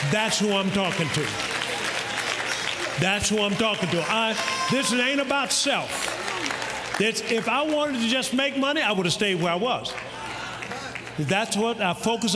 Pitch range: 150-205 Hz